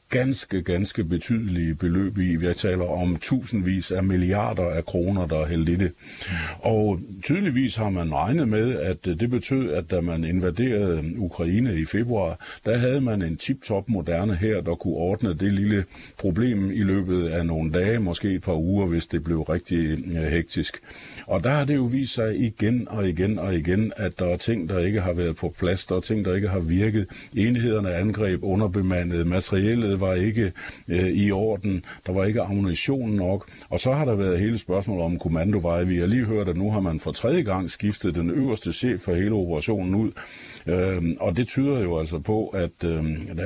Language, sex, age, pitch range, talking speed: Danish, male, 50-69, 90-110 Hz, 195 wpm